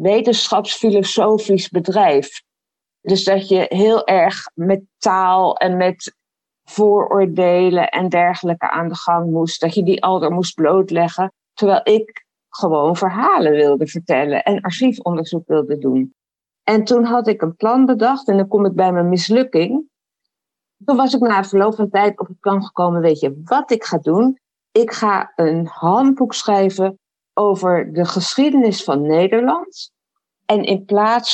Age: 50-69